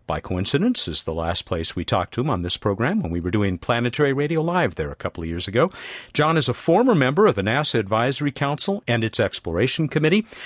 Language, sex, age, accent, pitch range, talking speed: English, male, 50-69, American, 105-165 Hz, 230 wpm